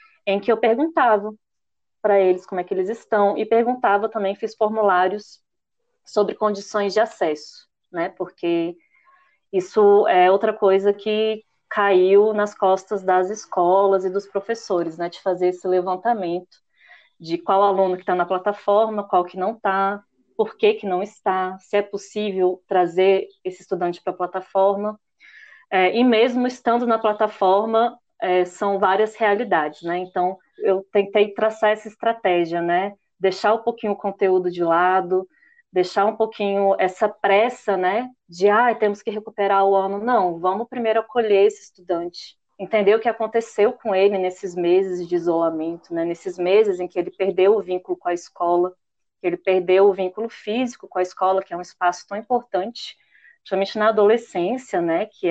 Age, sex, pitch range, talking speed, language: 20-39, female, 185-220 Hz, 165 wpm, Portuguese